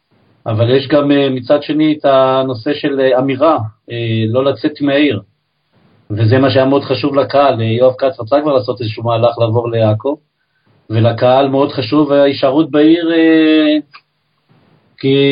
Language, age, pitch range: Hebrew, 40-59, 130-155 Hz